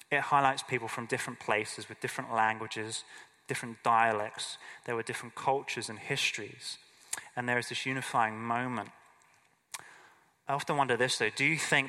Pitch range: 110-130 Hz